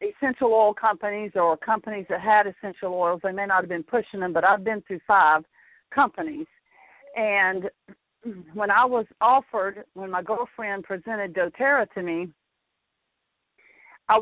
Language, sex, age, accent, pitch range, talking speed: English, female, 50-69, American, 200-250 Hz, 150 wpm